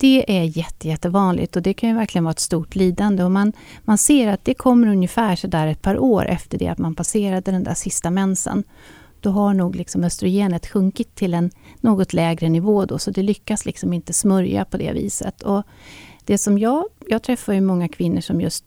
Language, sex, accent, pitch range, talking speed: Swedish, female, native, 180-230 Hz, 220 wpm